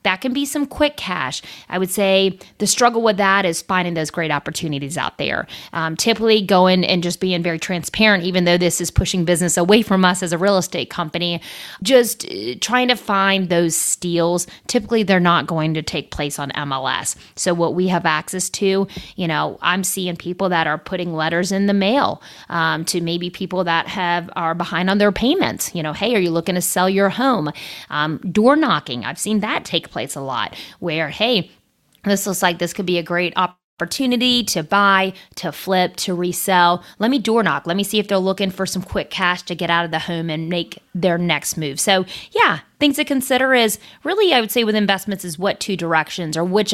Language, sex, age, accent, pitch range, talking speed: English, female, 30-49, American, 170-200 Hz, 215 wpm